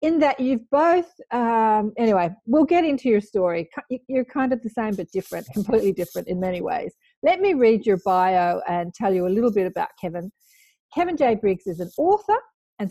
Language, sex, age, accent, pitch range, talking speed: English, female, 40-59, Australian, 185-265 Hz, 200 wpm